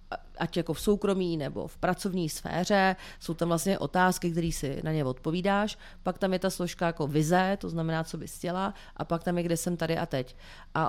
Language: Czech